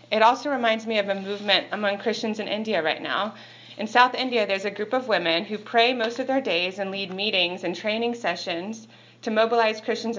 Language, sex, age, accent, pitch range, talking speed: English, female, 30-49, American, 175-225 Hz, 210 wpm